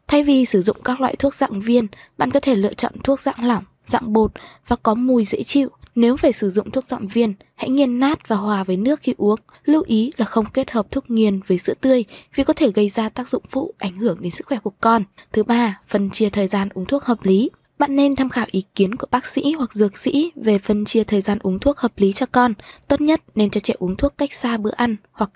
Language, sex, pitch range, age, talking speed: Vietnamese, female, 210-265 Hz, 20-39, 265 wpm